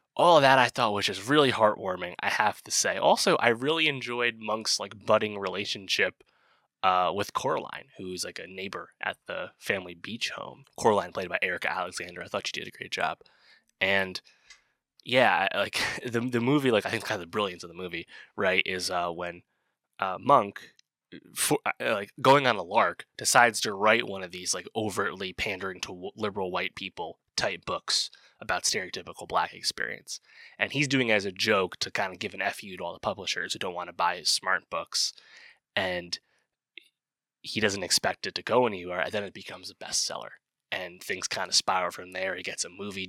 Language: English